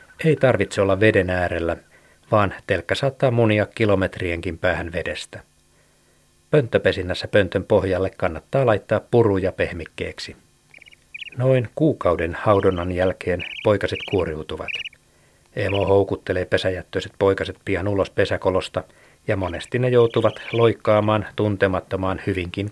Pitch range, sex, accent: 95-110 Hz, male, native